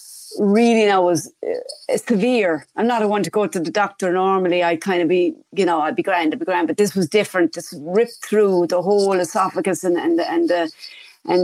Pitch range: 175-225 Hz